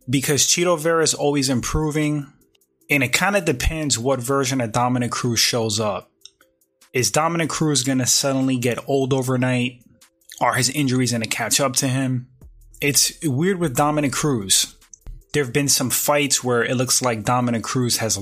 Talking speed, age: 175 wpm, 20-39